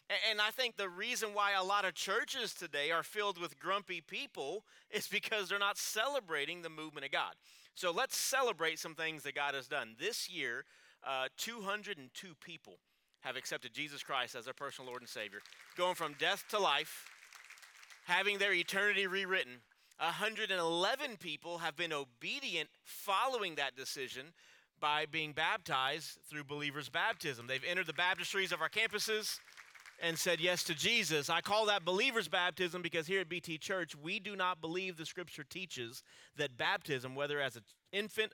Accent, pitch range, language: American, 145-195 Hz, English